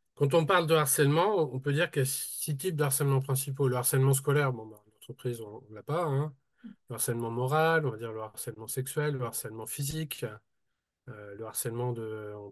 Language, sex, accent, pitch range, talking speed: French, male, French, 120-150 Hz, 210 wpm